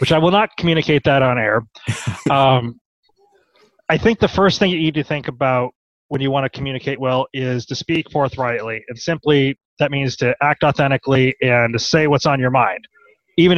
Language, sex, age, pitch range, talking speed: English, male, 30-49, 125-150 Hz, 195 wpm